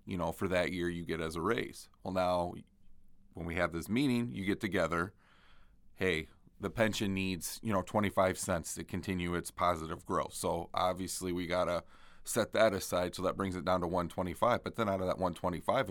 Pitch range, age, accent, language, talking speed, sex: 85-100 Hz, 30-49, American, English, 205 wpm, male